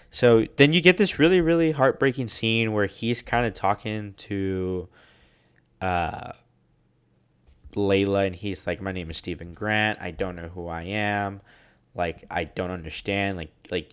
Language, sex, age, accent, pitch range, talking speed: English, male, 20-39, American, 90-120 Hz, 160 wpm